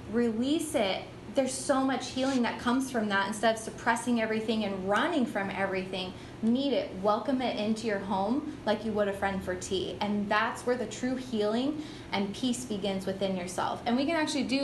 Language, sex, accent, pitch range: English, female, American, 215-270 Hz